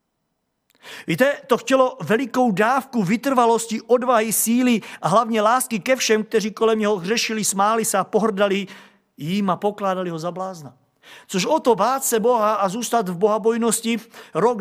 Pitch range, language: 190-235 Hz, Czech